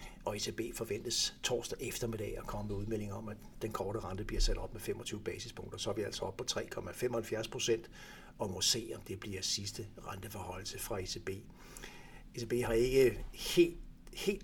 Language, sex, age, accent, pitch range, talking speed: Danish, male, 60-79, native, 105-125 Hz, 180 wpm